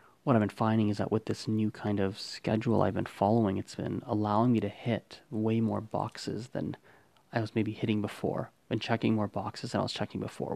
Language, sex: English, male